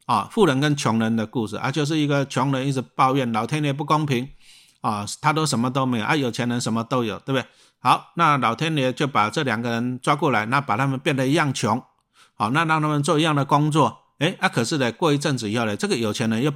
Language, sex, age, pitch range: Chinese, male, 50-69, 115-150 Hz